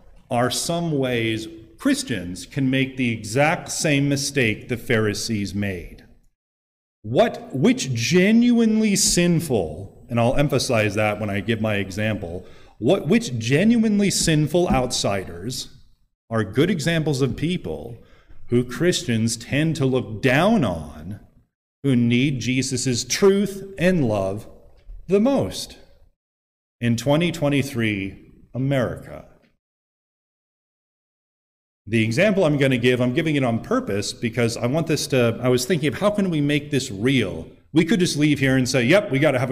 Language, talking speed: English, 140 wpm